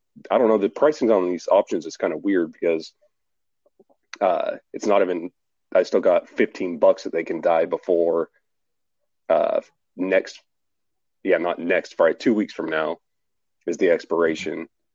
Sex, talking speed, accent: male, 160 wpm, American